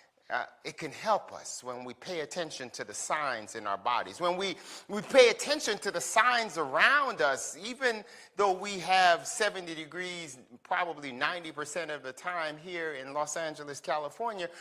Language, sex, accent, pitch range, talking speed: English, male, American, 170-260 Hz, 170 wpm